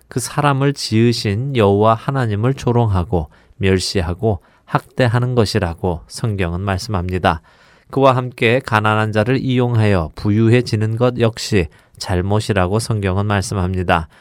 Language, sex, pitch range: Korean, male, 100-125 Hz